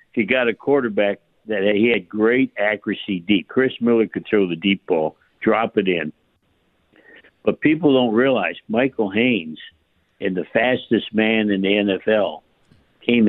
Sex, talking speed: male, 155 wpm